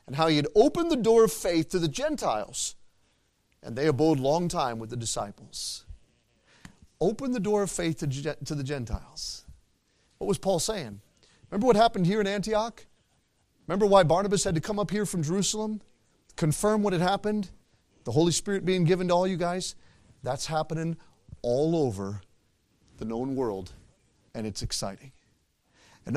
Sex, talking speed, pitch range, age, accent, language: male, 165 wpm, 140-215 Hz, 40-59, American, English